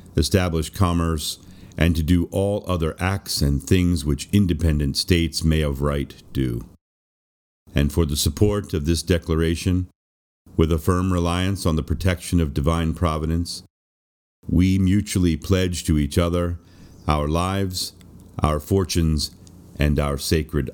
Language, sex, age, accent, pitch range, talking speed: English, male, 50-69, American, 75-90 Hz, 135 wpm